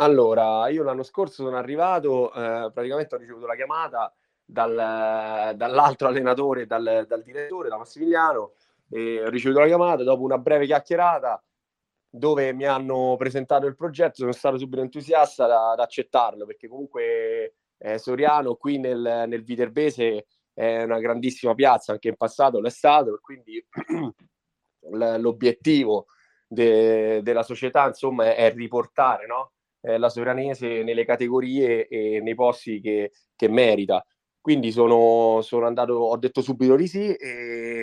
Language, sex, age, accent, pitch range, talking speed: Italian, male, 20-39, native, 115-150 Hz, 140 wpm